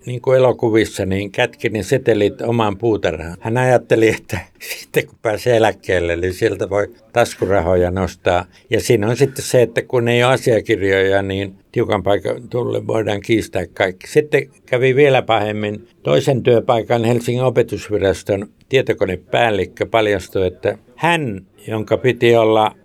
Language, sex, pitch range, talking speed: Finnish, male, 100-125 Hz, 135 wpm